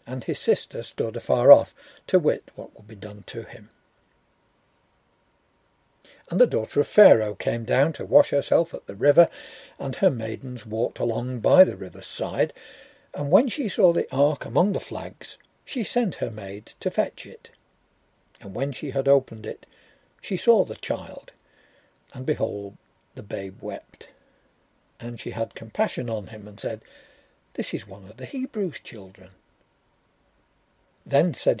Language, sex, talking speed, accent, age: English, male, 160 wpm, British, 60-79